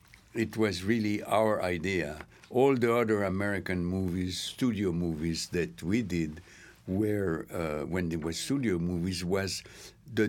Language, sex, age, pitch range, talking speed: English, male, 60-79, 85-110 Hz, 140 wpm